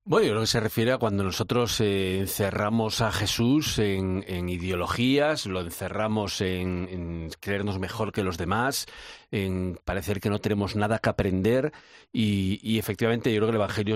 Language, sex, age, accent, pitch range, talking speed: Spanish, male, 40-59, Spanish, 95-120 Hz, 175 wpm